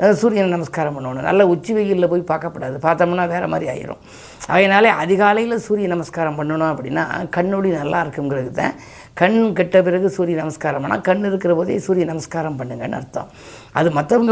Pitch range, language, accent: 155-190 Hz, Tamil, native